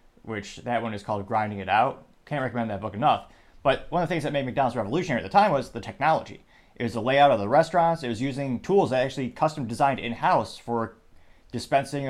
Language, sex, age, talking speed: English, male, 30-49, 230 wpm